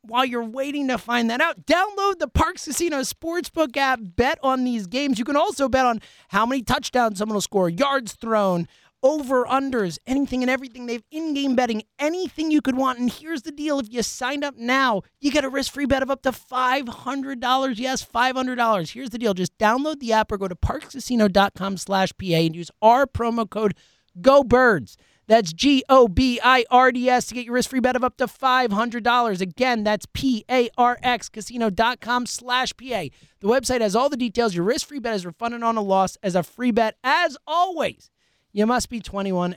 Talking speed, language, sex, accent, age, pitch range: 185 wpm, English, male, American, 30-49, 200-270 Hz